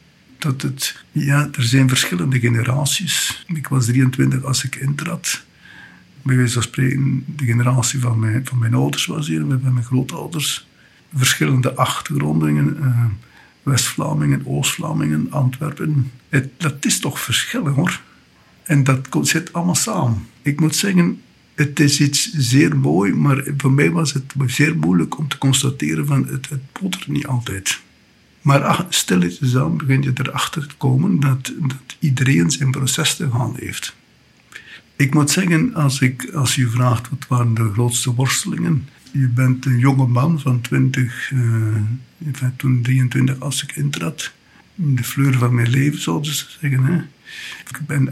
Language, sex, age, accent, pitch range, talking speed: Dutch, male, 60-79, Dutch, 125-145 Hz, 155 wpm